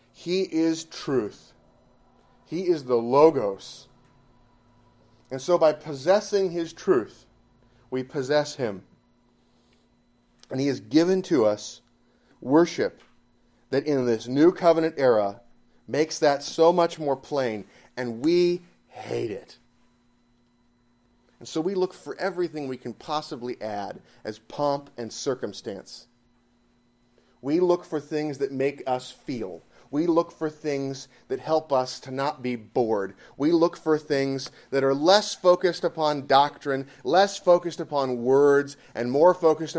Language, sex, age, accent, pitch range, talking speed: English, male, 30-49, American, 120-165 Hz, 135 wpm